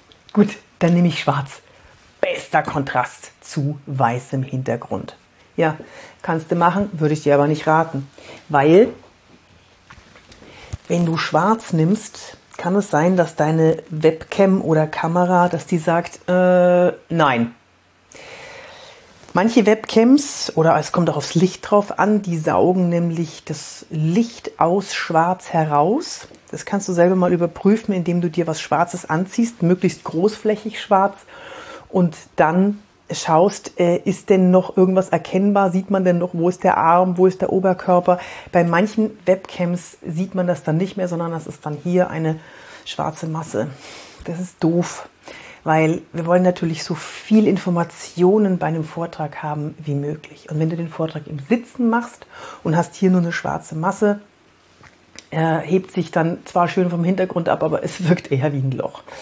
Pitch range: 160-195 Hz